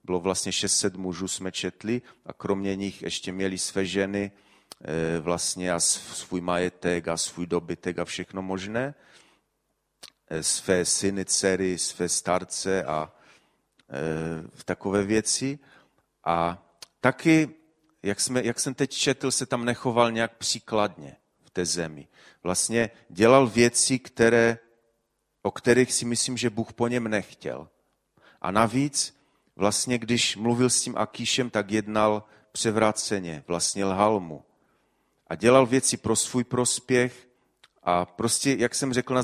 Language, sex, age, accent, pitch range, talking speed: Czech, male, 40-59, native, 95-120 Hz, 125 wpm